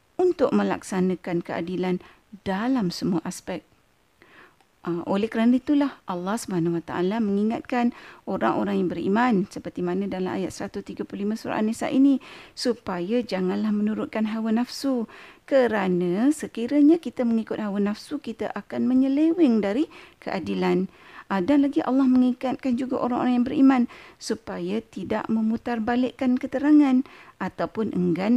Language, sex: Malay, female